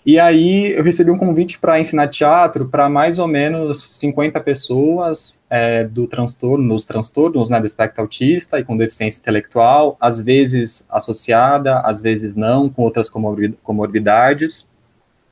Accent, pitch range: Brazilian, 120-160 Hz